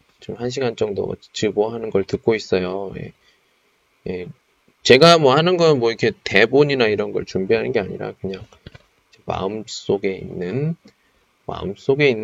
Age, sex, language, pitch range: 20-39, male, Chinese, 105-155 Hz